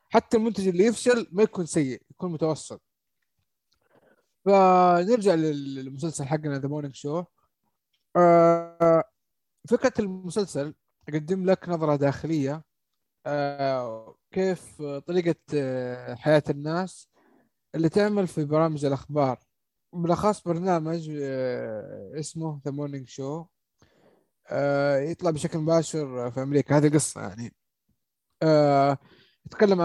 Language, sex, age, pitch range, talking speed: Arabic, male, 20-39, 140-175 Hz, 90 wpm